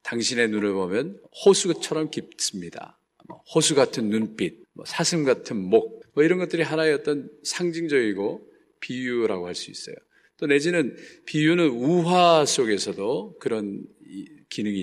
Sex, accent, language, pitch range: male, native, Korean, 110-165 Hz